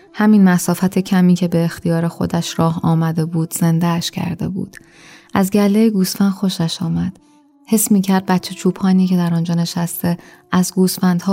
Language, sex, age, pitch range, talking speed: Persian, female, 20-39, 155-190 Hz, 145 wpm